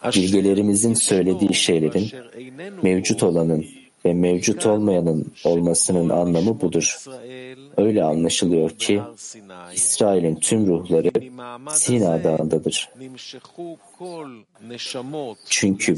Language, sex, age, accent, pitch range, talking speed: Turkish, male, 50-69, native, 90-125 Hz, 75 wpm